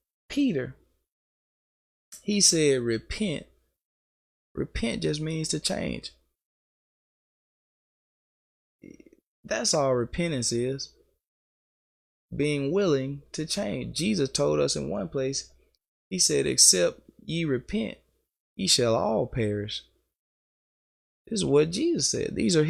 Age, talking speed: 20-39, 105 wpm